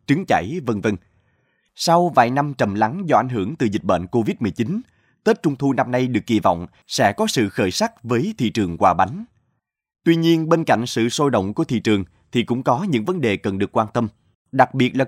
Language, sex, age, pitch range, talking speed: Vietnamese, male, 20-39, 110-160 Hz, 225 wpm